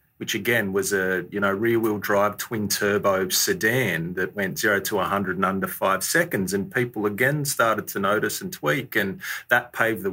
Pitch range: 100-125 Hz